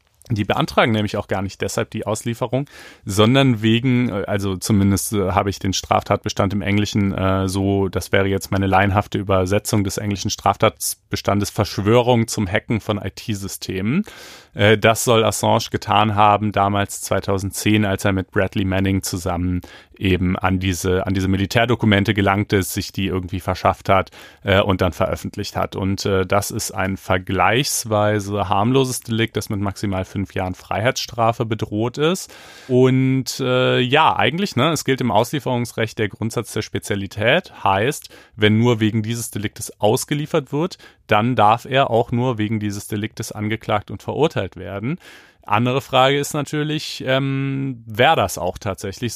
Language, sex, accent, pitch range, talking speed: German, male, German, 100-120 Hz, 150 wpm